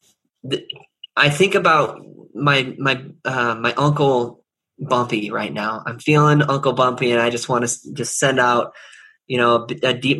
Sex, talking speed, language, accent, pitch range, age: male, 160 wpm, English, American, 115-135 Hz, 20-39